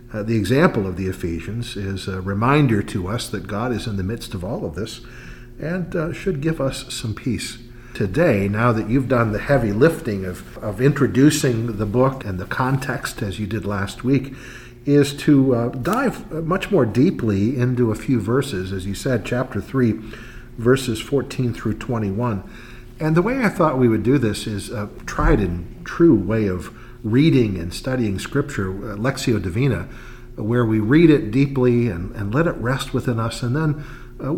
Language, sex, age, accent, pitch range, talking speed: English, male, 50-69, American, 105-135 Hz, 185 wpm